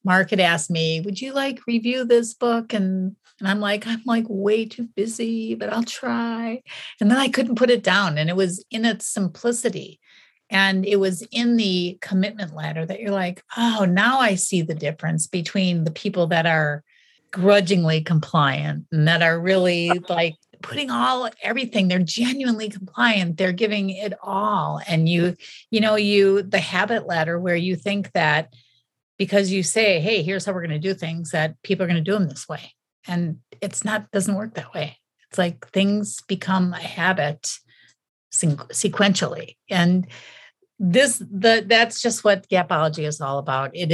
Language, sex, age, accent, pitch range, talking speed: English, female, 40-59, American, 155-205 Hz, 175 wpm